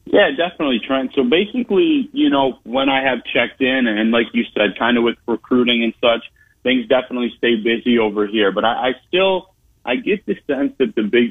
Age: 30-49